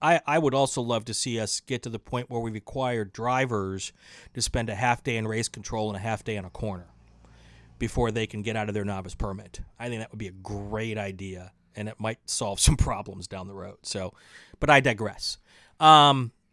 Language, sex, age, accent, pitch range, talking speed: English, male, 40-59, American, 115-145 Hz, 225 wpm